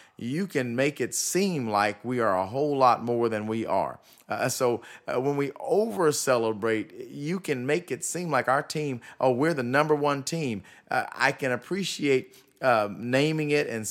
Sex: male